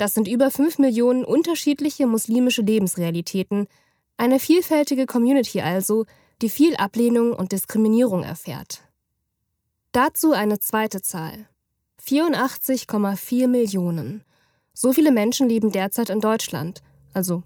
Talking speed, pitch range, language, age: 110 wpm, 185-255 Hz, German, 10-29